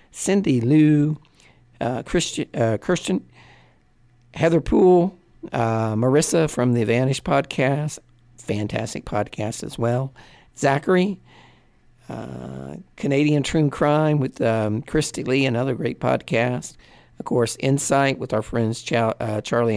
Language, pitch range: English, 115-140 Hz